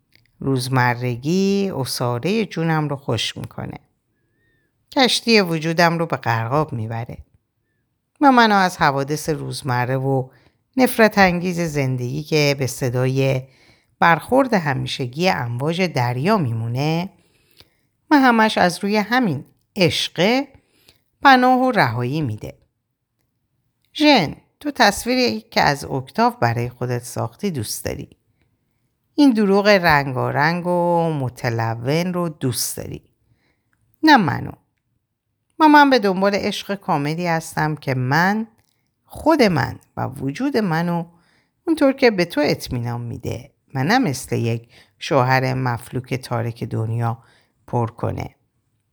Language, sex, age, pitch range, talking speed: Persian, female, 50-69, 125-200 Hz, 110 wpm